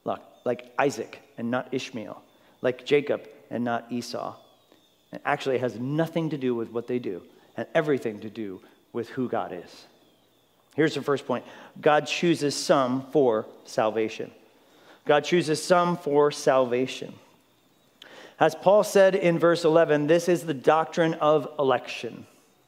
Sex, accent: male, American